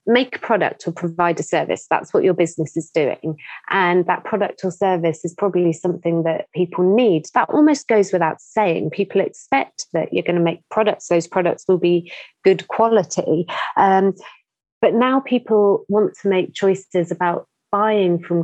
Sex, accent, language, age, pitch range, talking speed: female, British, English, 30-49, 170-200 Hz, 175 wpm